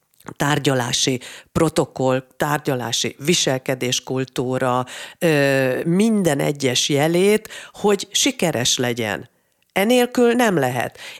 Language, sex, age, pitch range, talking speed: Hungarian, female, 40-59, 135-190 Hz, 75 wpm